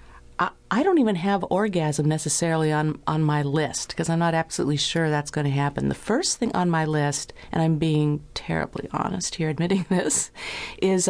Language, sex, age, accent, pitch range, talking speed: English, female, 50-69, American, 145-185 Hz, 185 wpm